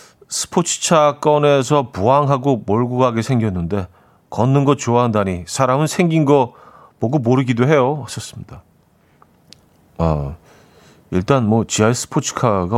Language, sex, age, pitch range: Korean, male, 40-59, 100-145 Hz